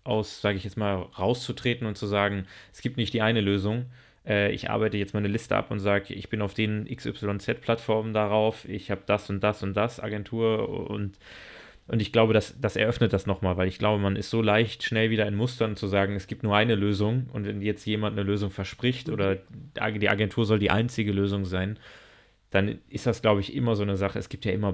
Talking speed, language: 225 wpm, German